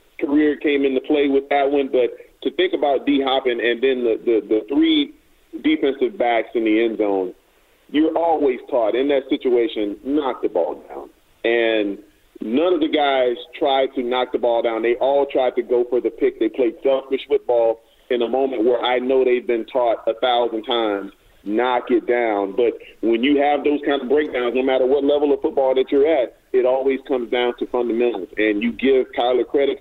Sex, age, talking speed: male, 40-59, 205 wpm